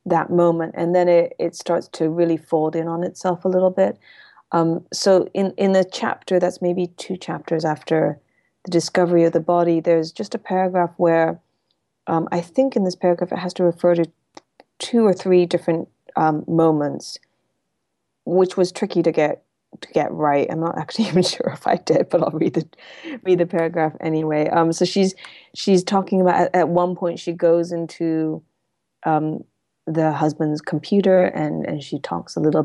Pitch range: 155-180 Hz